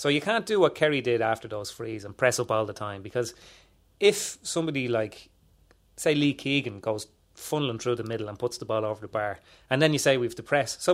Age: 30-49